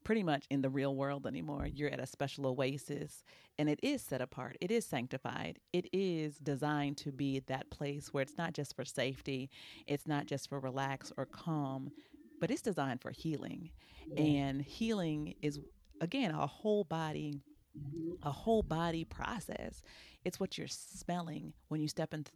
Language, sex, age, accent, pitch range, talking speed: English, female, 40-59, American, 140-170 Hz, 170 wpm